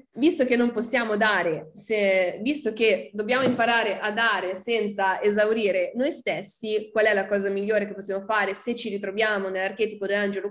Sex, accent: female, native